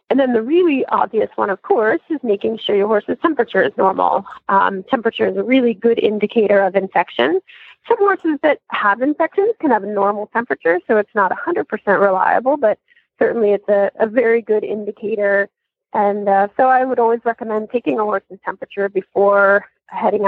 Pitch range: 205-270 Hz